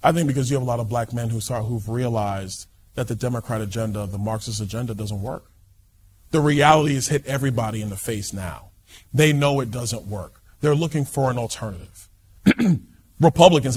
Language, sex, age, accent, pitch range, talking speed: English, male, 30-49, American, 105-130 Hz, 190 wpm